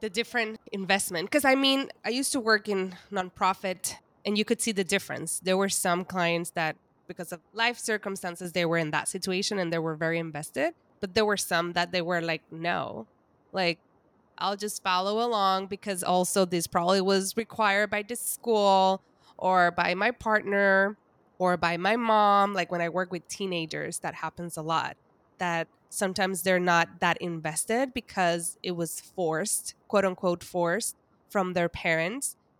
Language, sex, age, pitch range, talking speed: English, female, 20-39, 175-215 Hz, 170 wpm